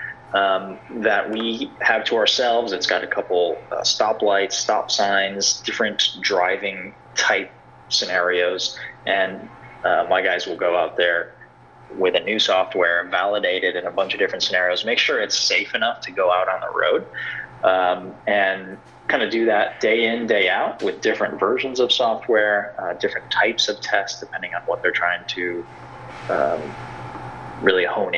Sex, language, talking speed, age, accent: male, English, 170 wpm, 20-39, American